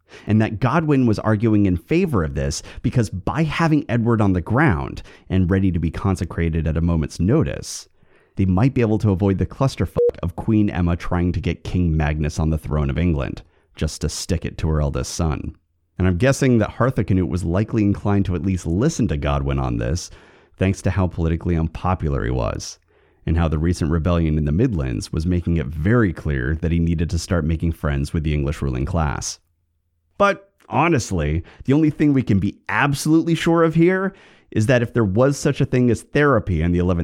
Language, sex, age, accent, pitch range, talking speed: English, male, 30-49, American, 80-110 Hz, 205 wpm